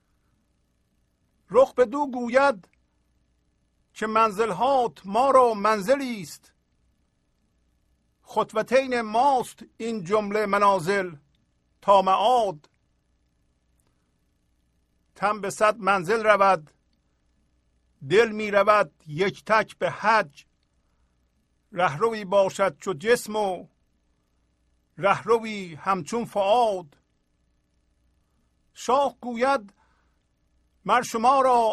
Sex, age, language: male, 50-69, Persian